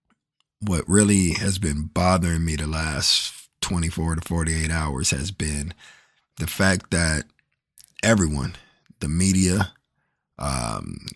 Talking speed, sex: 115 wpm, male